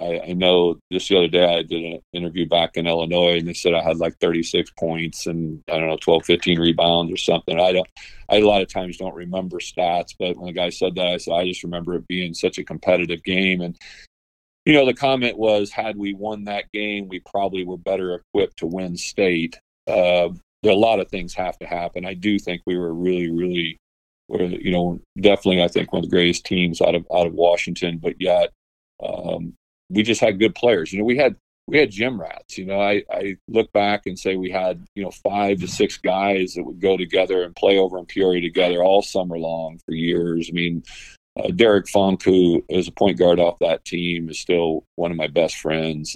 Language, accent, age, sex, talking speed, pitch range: English, American, 40-59, male, 225 wpm, 85-95 Hz